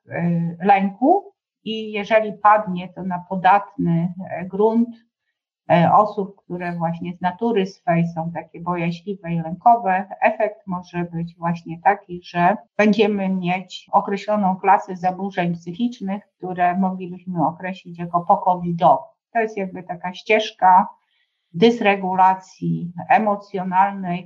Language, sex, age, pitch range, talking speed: Polish, female, 50-69, 175-205 Hz, 110 wpm